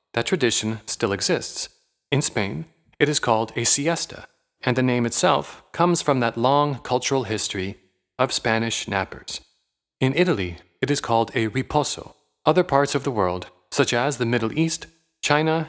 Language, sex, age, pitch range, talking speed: English, male, 30-49, 110-150 Hz, 160 wpm